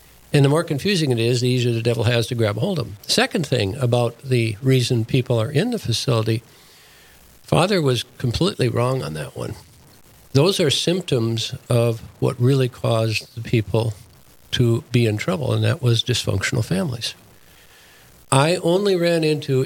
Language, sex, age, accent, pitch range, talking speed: English, male, 60-79, American, 115-140 Hz, 170 wpm